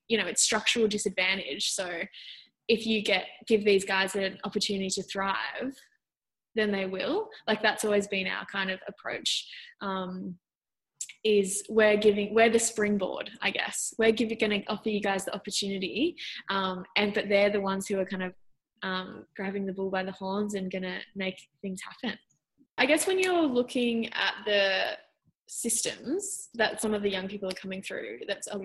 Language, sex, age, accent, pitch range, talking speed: English, female, 10-29, Australian, 195-225 Hz, 180 wpm